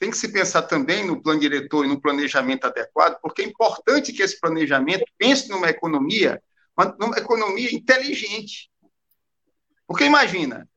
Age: 50-69